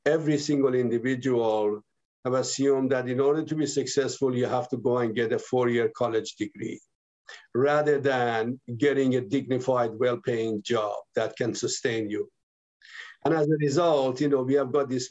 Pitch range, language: 130-155 Hz, English